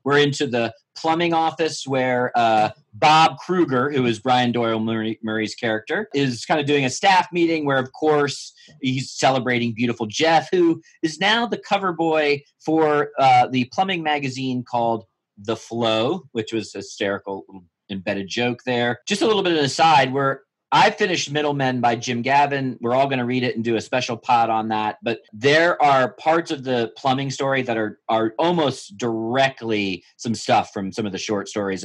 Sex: male